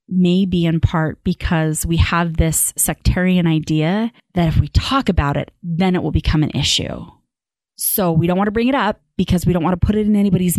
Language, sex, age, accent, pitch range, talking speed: English, female, 30-49, American, 155-185 Hz, 220 wpm